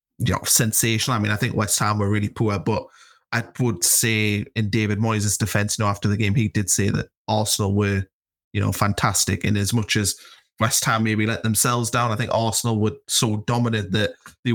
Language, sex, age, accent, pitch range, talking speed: English, male, 20-39, British, 105-125 Hz, 215 wpm